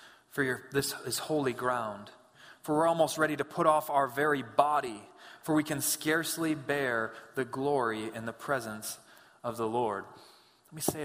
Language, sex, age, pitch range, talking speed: English, male, 20-39, 130-165 Hz, 175 wpm